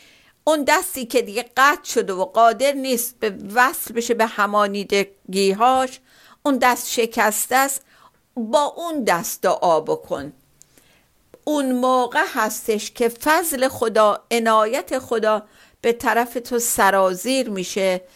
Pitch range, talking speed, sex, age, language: 205-255 Hz, 120 wpm, female, 50-69, Persian